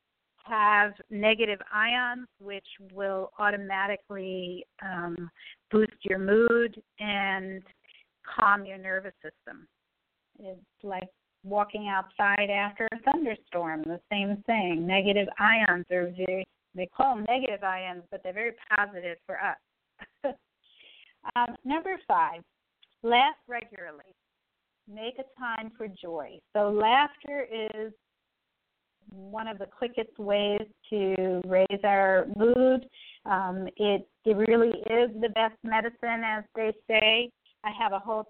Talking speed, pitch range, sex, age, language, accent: 120 wpm, 195-230 Hz, female, 40-59, English, American